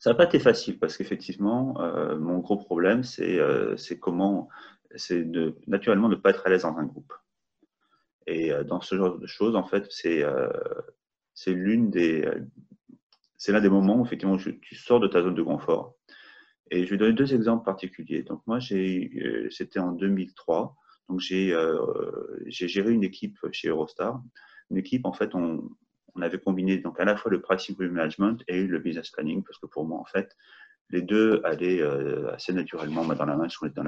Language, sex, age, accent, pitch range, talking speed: French, male, 30-49, French, 95-135 Hz, 205 wpm